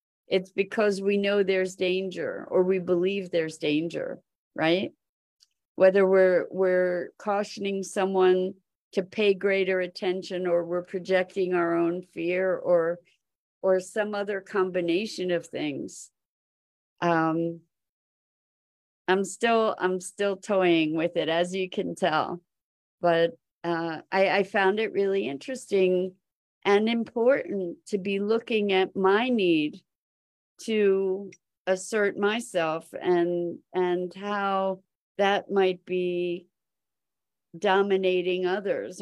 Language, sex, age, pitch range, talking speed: English, female, 50-69, 180-200 Hz, 110 wpm